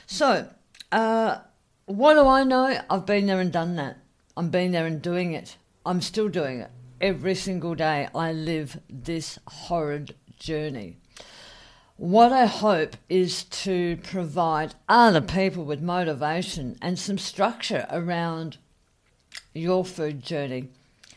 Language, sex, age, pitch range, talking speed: English, female, 50-69, 155-190 Hz, 135 wpm